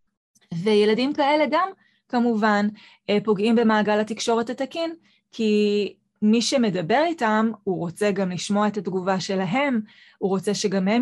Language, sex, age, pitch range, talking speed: Hebrew, female, 20-39, 200-240 Hz, 125 wpm